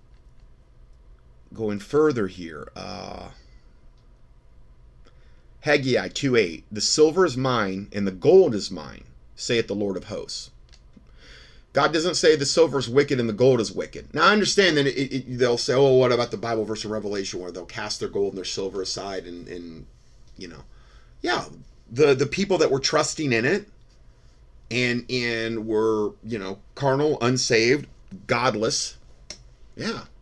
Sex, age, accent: male, 30-49, American